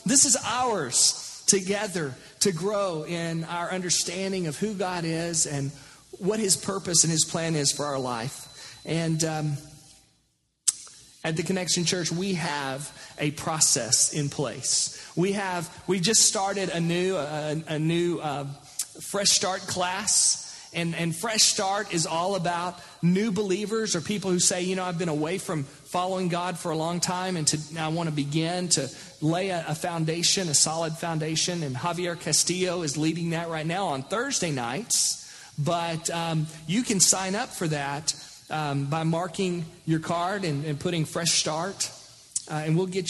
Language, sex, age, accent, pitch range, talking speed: English, male, 40-59, American, 155-180 Hz, 170 wpm